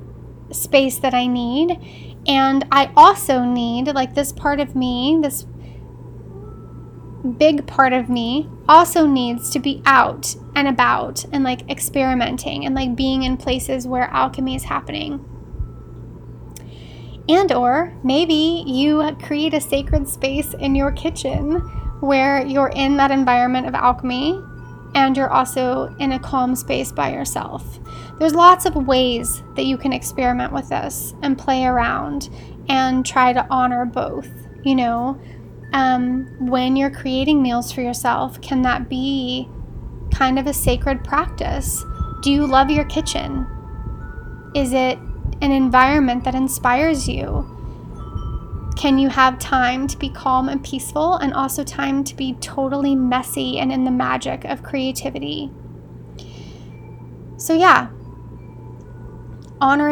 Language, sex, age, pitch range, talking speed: English, female, 10-29, 245-275 Hz, 135 wpm